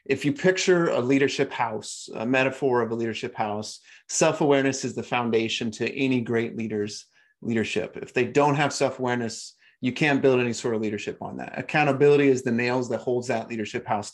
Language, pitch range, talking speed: English, 115-140 Hz, 185 wpm